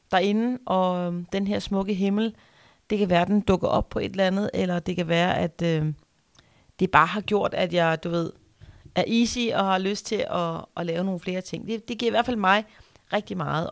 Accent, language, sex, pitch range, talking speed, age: native, Danish, female, 155-190 Hz, 230 wpm, 40-59